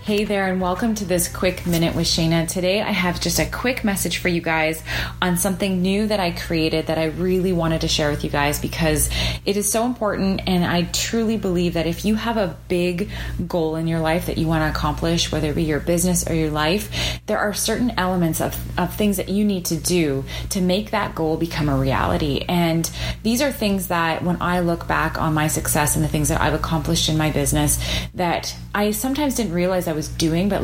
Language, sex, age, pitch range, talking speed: English, female, 30-49, 155-185 Hz, 225 wpm